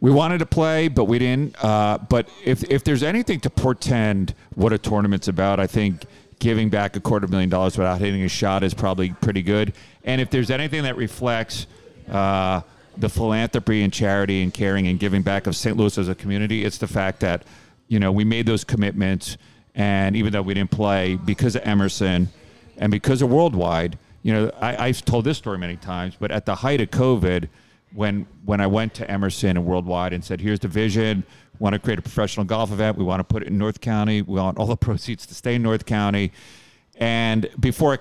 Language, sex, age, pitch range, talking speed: English, male, 40-59, 95-115 Hz, 215 wpm